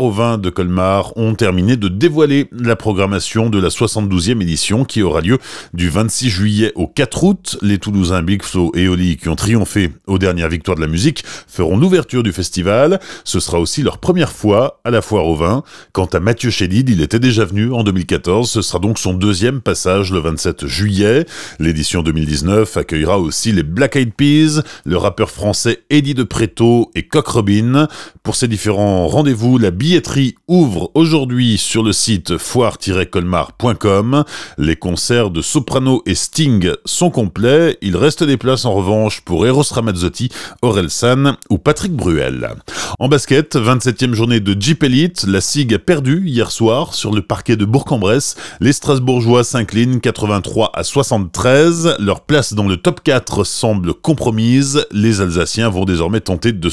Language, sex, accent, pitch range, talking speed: French, male, French, 95-130 Hz, 170 wpm